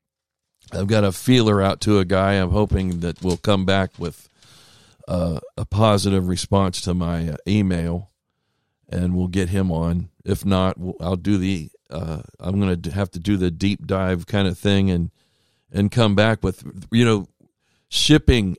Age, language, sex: 50-69, English, male